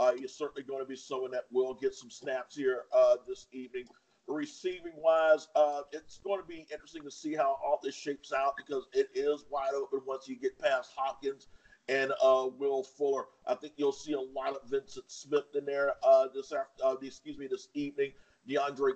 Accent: American